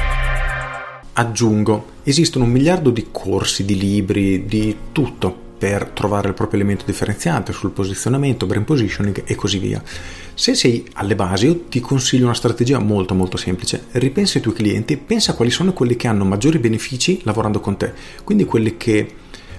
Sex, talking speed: male, 160 wpm